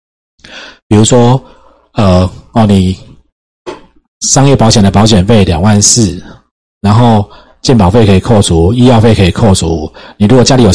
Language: Chinese